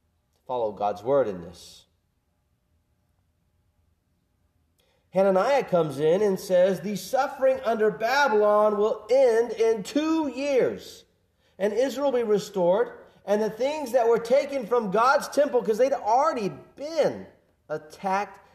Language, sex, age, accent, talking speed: English, male, 40-59, American, 125 wpm